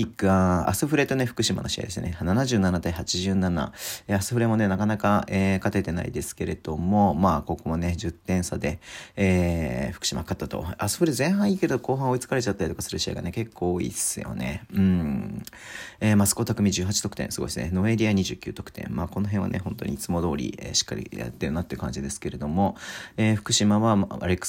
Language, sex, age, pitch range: Japanese, male, 40-59, 90-110 Hz